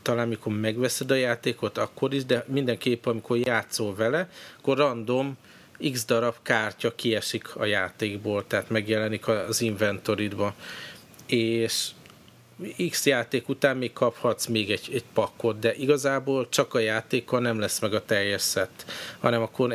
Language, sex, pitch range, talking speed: Hungarian, male, 110-125 Hz, 145 wpm